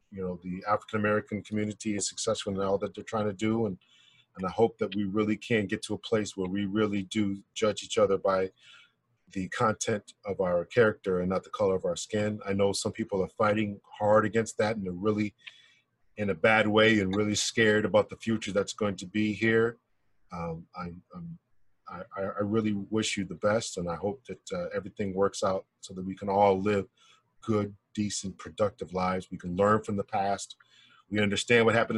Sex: male